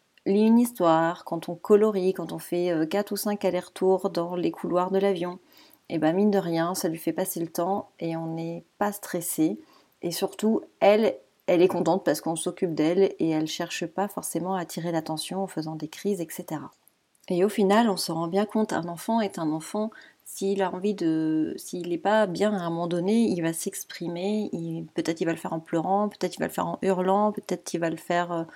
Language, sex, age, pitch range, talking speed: French, female, 30-49, 170-200 Hz, 215 wpm